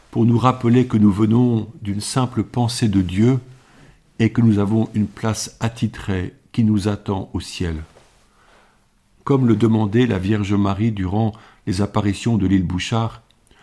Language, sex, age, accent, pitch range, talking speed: French, male, 50-69, French, 100-120 Hz, 155 wpm